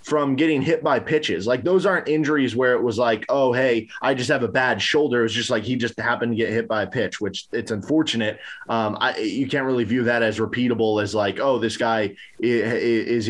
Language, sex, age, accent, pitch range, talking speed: English, male, 20-39, American, 115-145 Hz, 230 wpm